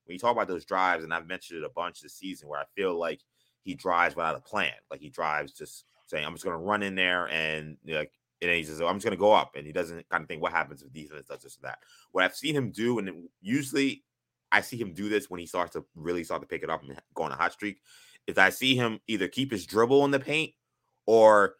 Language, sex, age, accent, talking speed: English, male, 20-39, American, 275 wpm